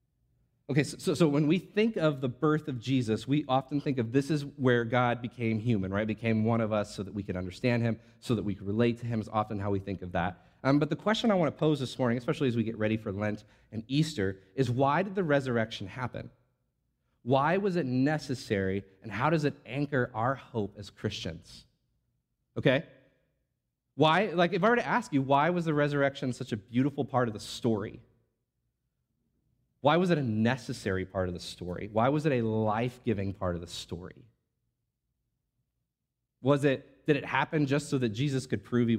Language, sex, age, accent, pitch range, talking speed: English, male, 30-49, American, 110-145 Hz, 210 wpm